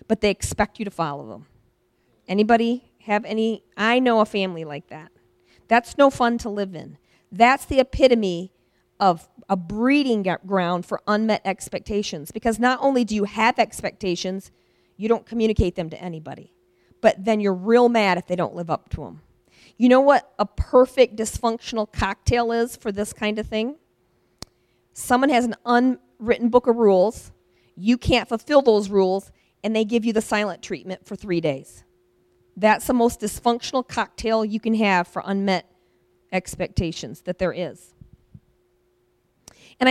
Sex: female